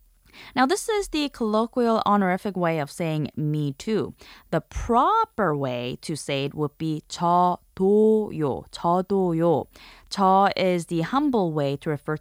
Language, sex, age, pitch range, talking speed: English, female, 20-39, 155-230 Hz, 145 wpm